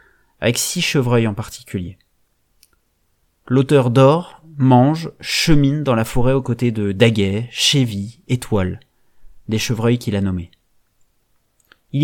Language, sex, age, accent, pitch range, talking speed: French, male, 30-49, French, 100-135 Hz, 120 wpm